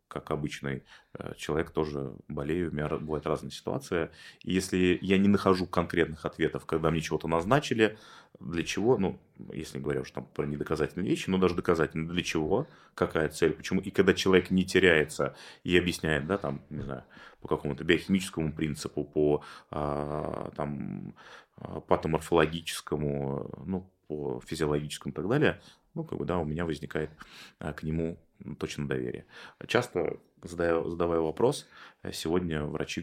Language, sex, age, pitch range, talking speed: Russian, male, 30-49, 75-90 Hz, 145 wpm